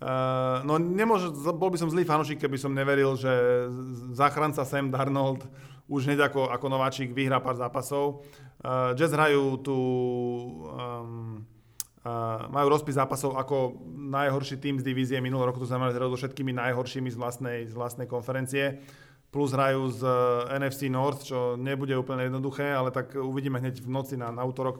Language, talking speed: Slovak, 165 wpm